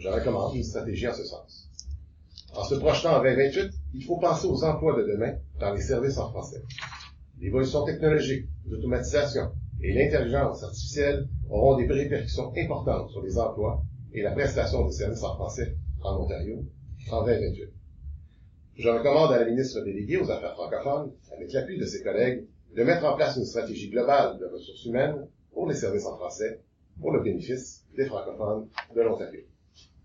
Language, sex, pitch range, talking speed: French, male, 90-140 Hz, 170 wpm